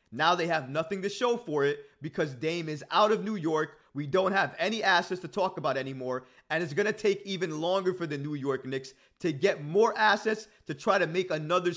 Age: 30-49